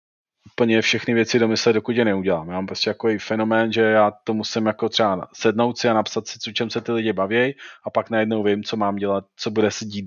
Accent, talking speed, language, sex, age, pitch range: native, 240 wpm, Czech, male, 30-49, 100-115 Hz